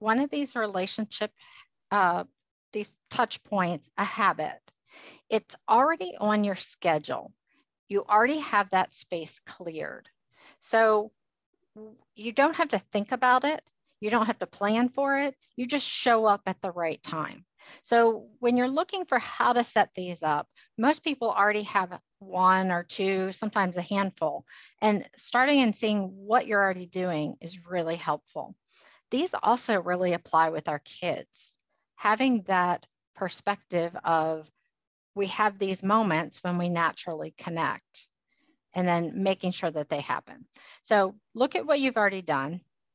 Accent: American